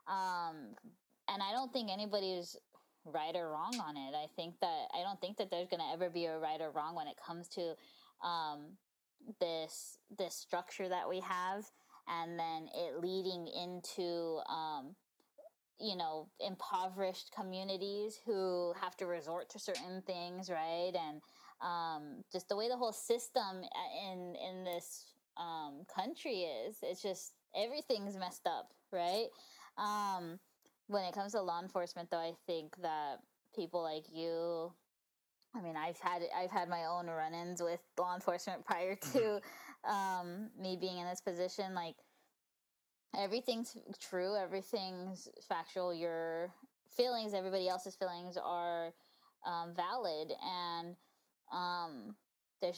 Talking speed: 145 wpm